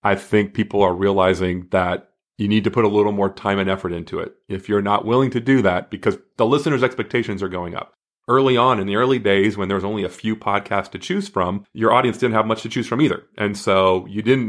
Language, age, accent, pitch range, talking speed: English, 30-49, American, 100-125 Hz, 255 wpm